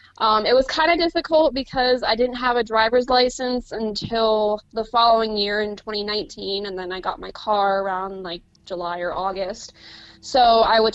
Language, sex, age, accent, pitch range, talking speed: English, female, 20-39, American, 205-250 Hz, 180 wpm